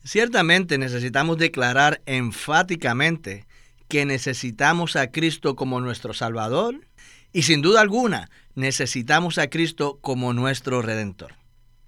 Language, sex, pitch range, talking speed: Spanish, male, 125-165 Hz, 105 wpm